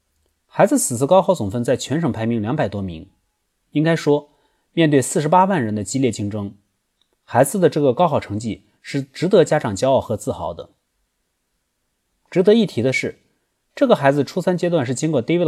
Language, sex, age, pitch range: Chinese, male, 30-49, 110-175 Hz